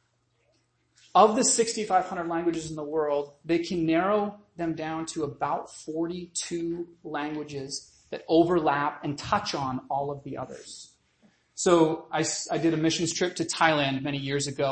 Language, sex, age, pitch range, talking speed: English, male, 30-49, 145-180 Hz, 150 wpm